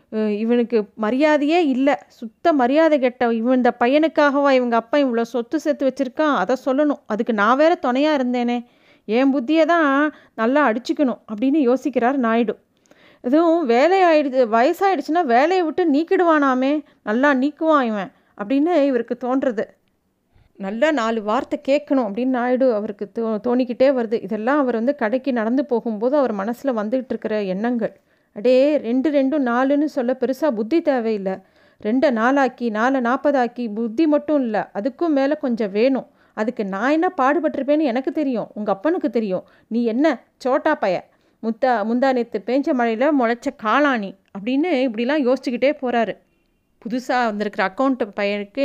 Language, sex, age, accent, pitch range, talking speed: Tamil, female, 30-49, native, 235-290 Hz, 135 wpm